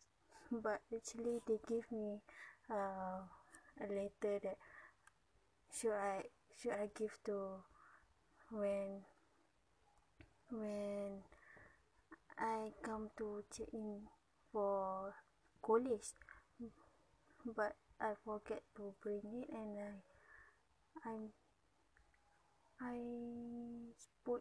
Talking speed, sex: 85 wpm, female